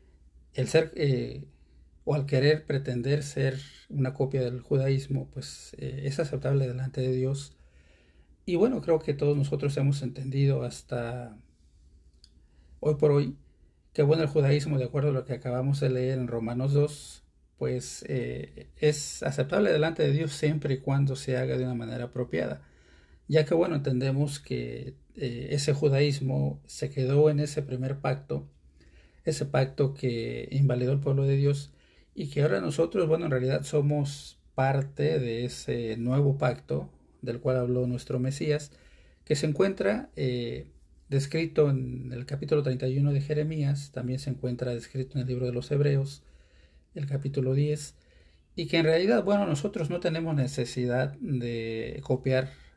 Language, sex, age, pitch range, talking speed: Spanish, male, 40-59, 120-145 Hz, 155 wpm